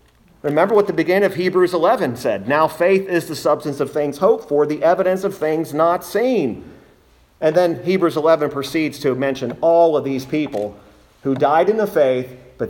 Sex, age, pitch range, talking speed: male, 40-59, 120-165 Hz, 190 wpm